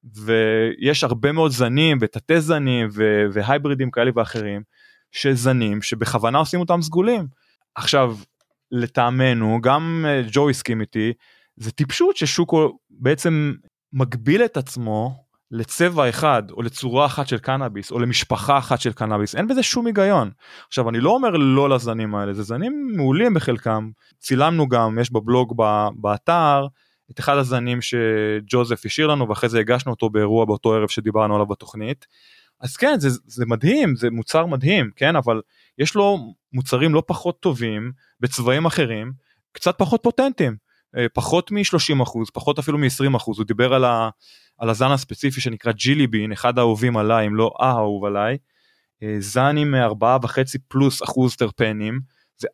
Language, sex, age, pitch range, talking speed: Hebrew, male, 20-39, 115-145 Hz, 145 wpm